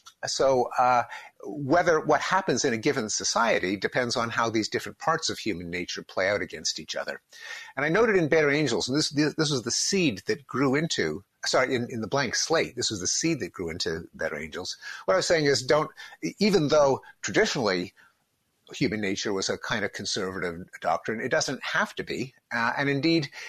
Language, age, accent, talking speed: English, 50-69, American, 200 wpm